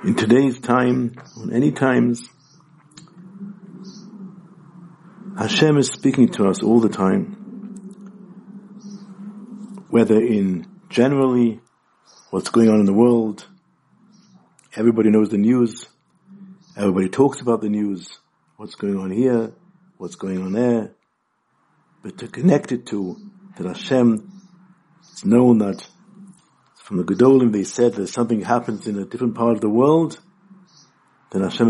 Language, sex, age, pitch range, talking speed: English, male, 60-79, 115-180 Hz, 125 wpm